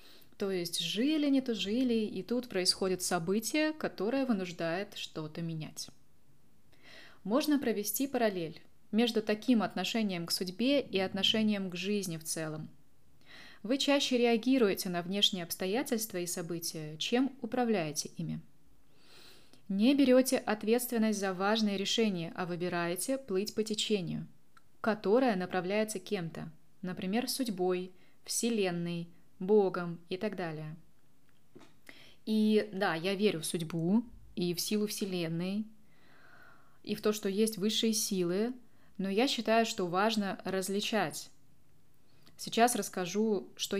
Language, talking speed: Russian, 120 wpm